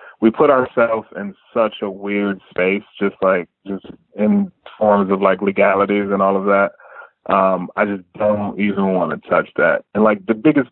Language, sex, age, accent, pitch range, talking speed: English, male, 20-39, American, 95-105 Hz, 185 wpm